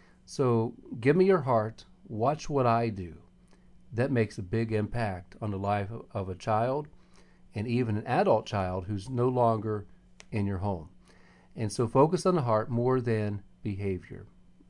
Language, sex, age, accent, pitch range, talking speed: English, male, 40-59, American, 105-145 Hz, 165 wpm